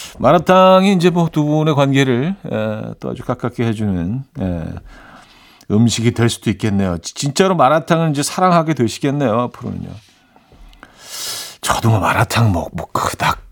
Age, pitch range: 50-69, 105-150 Hz